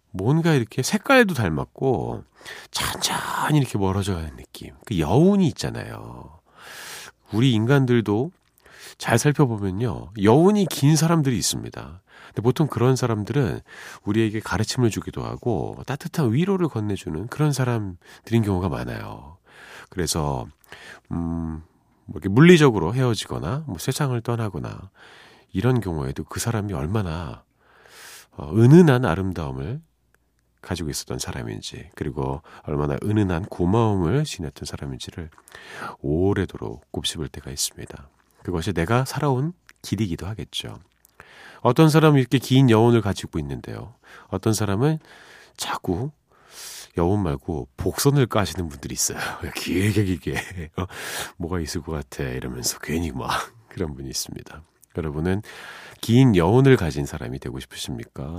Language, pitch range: Korean, 85-130 Hz